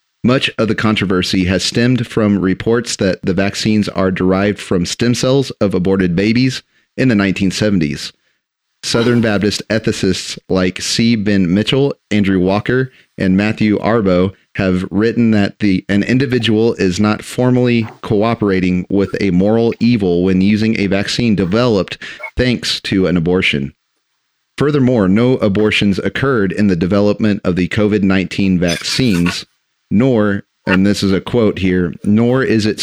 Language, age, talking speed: English, 30-49, 140 wpm